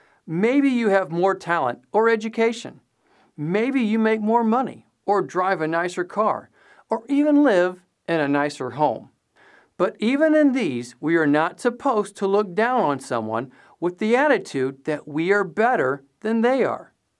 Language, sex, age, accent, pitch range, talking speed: English, male, 50-69, American, 150-245 Hz, 165 wpm